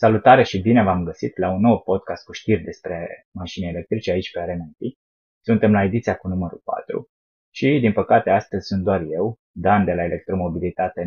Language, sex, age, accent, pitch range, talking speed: Romanian, male, 20-39, native, 85-100 Hz, 185 wpm